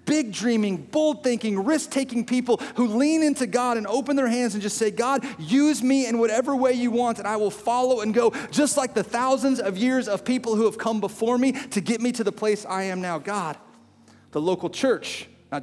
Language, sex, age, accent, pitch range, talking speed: English, male, 40-59, American, 210-250 Hz, 225 wpm